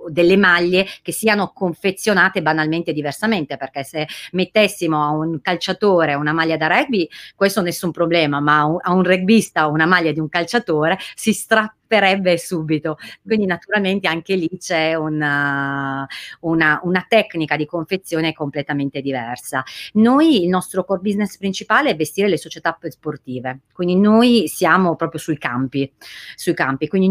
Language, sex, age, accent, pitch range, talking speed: Italian, female, 30-49, native, 150-195 Hz, 145 wpm